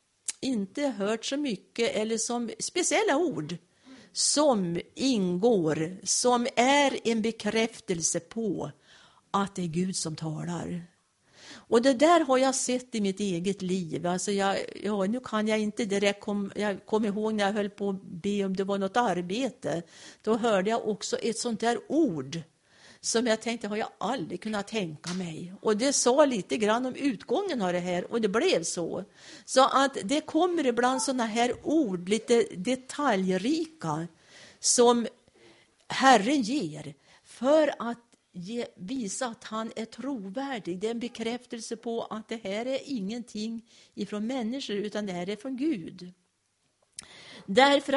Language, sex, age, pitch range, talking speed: Swedish, female, 50-69, 195-260 Hz, 155 wpm